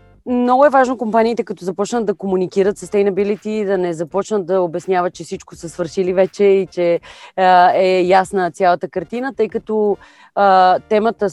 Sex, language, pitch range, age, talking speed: female, Bulgarian, 185-215 Hz, 30-49, 165 wpm